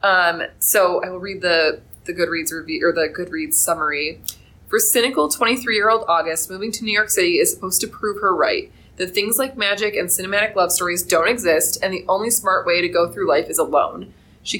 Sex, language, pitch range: female, English, 175-220 Hz